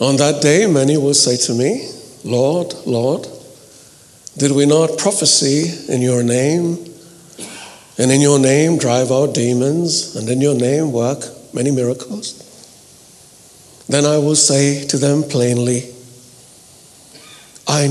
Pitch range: 125-160 Hz